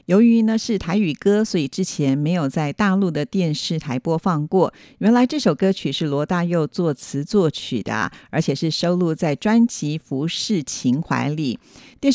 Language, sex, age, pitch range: Chinese, female, 50-69, 155-200 Hz